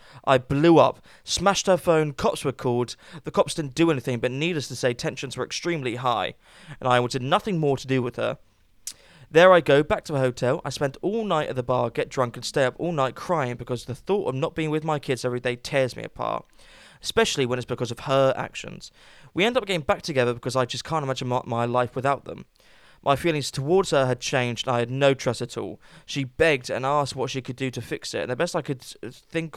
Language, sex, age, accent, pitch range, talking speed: English, male, 10-29, British, 125-155 Hz, 240 wpm